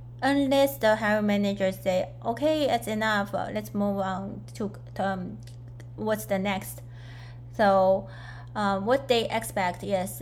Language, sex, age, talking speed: English, female, 20-39, 135 wpm